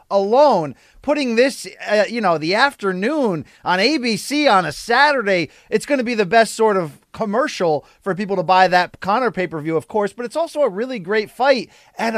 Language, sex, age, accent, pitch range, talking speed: English, male, 30-49, American, 180-235 Hz, 190 wpm